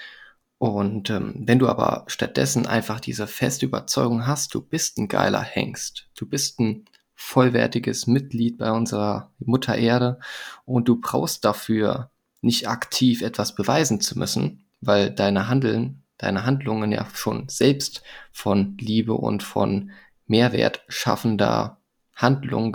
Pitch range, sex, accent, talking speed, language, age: 105-130 Hz, male, German, 130 wpm, German, 20-39